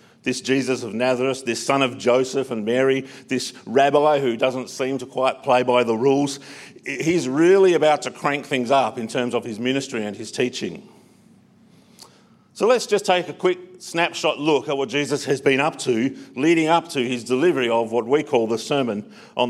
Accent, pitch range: Australian, 125-165 Hz